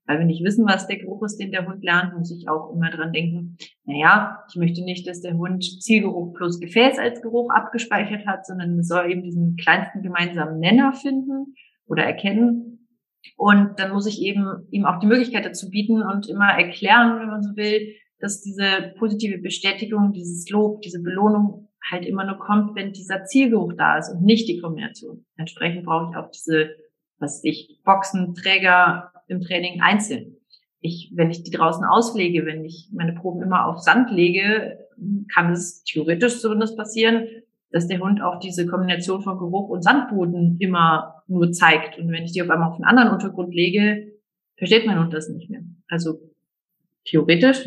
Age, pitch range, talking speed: 30-49, 170-210 Hz, 185 wpm